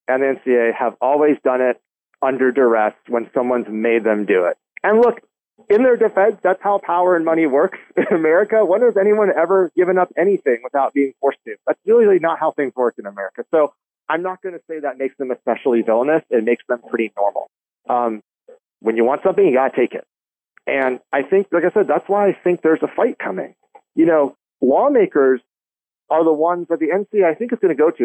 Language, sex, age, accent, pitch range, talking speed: English, male, 40-59, American, 130-210 Hz, 220 wpm